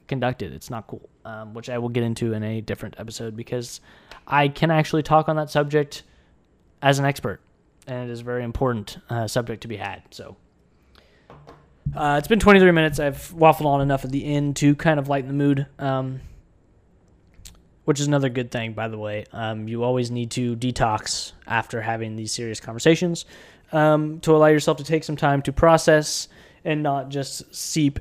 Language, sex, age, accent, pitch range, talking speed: English, male, 20-39, American, 120-150 Hz, 190 wpm